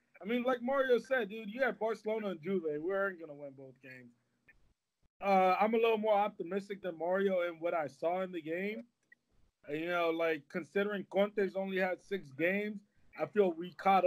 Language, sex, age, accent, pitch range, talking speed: English, male, 20-39, American, 175-215 Hz, 195 wpm